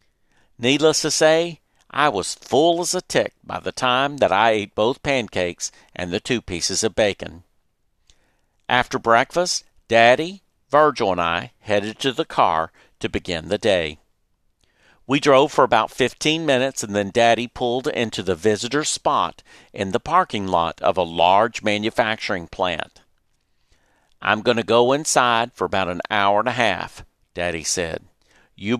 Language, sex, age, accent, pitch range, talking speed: English, male, 50-69, American, 95-135 Hz, 155 wpm